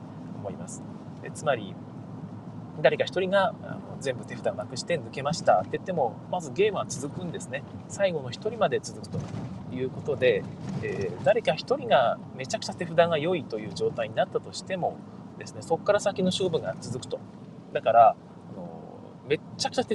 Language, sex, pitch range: Japanese, male, 135-200 Hz